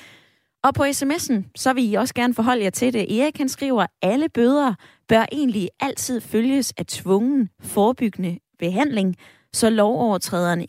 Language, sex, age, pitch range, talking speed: Danish, female, 20-39, 190-265 Hz, 155 wpm